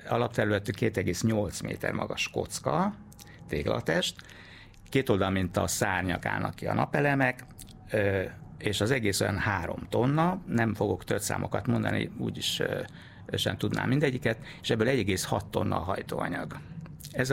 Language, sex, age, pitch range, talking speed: Hungarian, male, 60-79, 100-120 Hz, 130 wpm